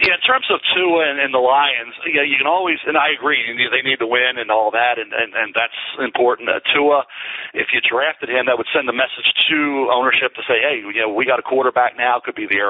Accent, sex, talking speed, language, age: American, male, 270 wpm, English, 40-59